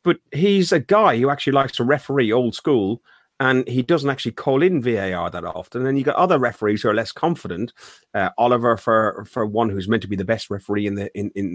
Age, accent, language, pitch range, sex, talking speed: 30-49, British, English, 110-155 Hz, male, 235 wpm